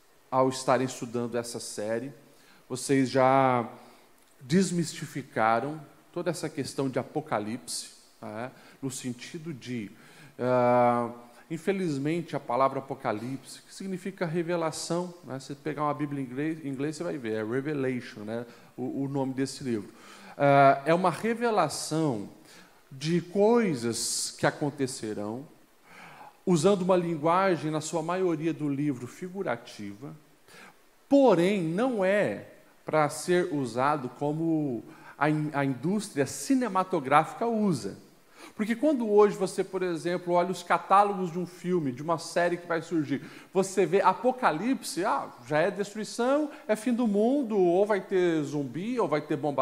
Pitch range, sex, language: 135-190 Hz, male, Portuguese